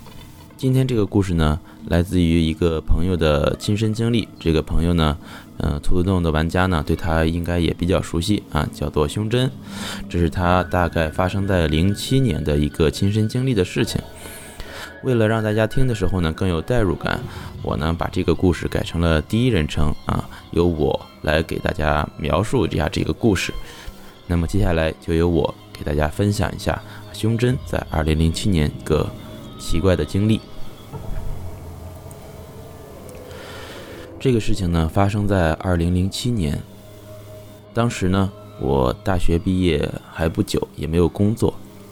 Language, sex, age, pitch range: Chinese, male, 20-39, 80-105 Hz